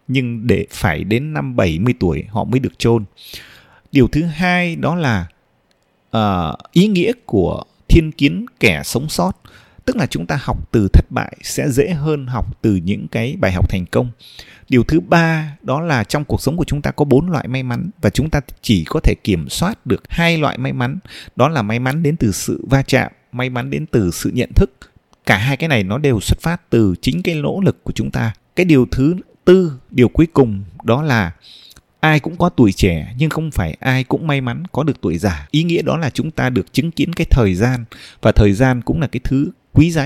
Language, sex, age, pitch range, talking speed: Vietnamese, male, 20-39, 105-150 Hz, 225 wpm